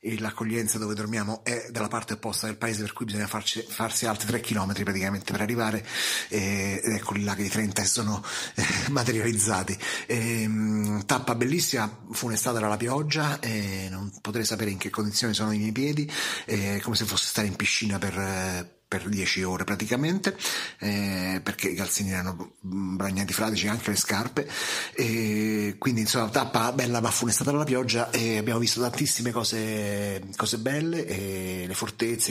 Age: 30-49